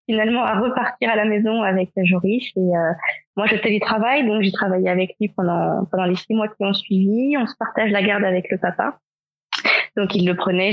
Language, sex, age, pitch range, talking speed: French, female, 20-39, 195-225 Hz, 220 wpm